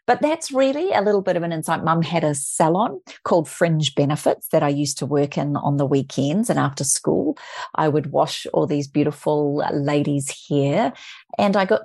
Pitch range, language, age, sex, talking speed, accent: 145-175 Hz, English, 40-59, female, 200 wpm, Australian